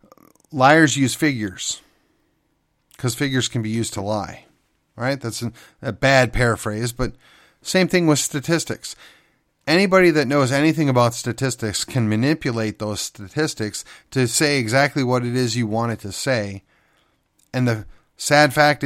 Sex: male